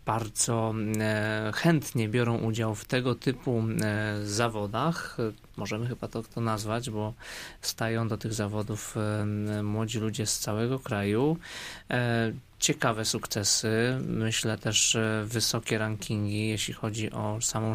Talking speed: 110 wpm